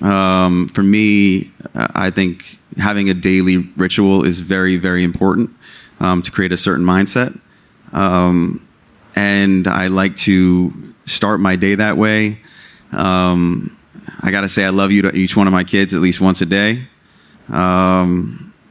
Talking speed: 155 wpm